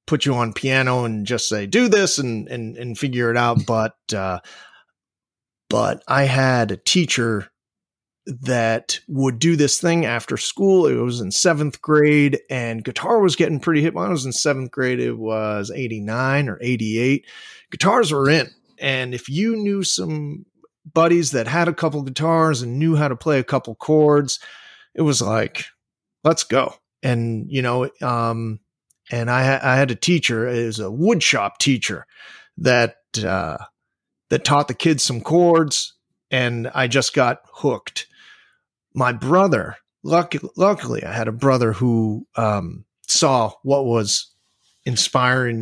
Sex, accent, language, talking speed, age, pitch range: male, American, English, 160 wpm, 30-49, 115-155 Hz